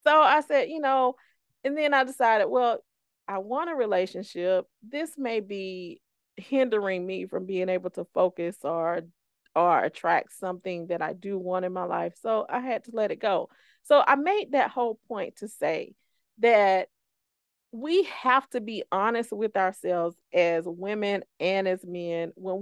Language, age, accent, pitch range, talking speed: English, 40-59, American, 185-255 Hz, 170 wpm